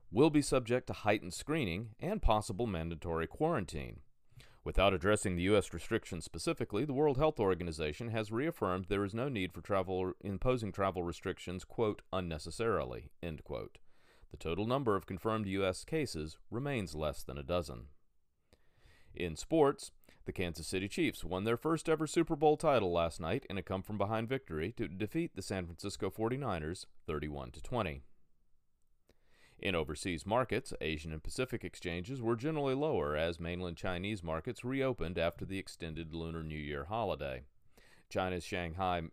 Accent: American